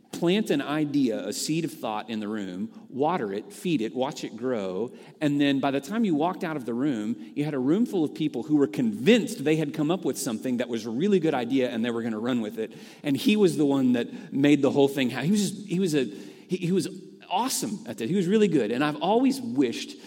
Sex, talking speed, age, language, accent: male, 265 wpm, 40-59, English, American